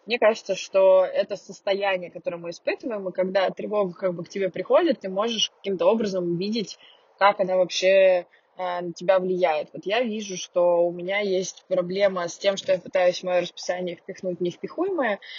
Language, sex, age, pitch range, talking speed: Russian, female, 20-39, 180-215 Hz, 180 wpm